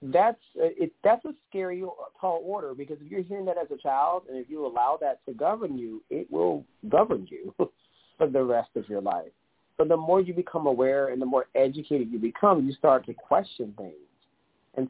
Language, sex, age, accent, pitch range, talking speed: English, male, 40-59, American, 125-180 Hz, 205 wpm